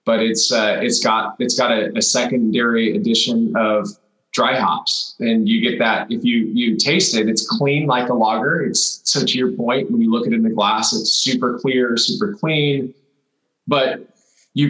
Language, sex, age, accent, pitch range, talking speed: English, male, 20-39, American, 120-150 Hz, 195 wpm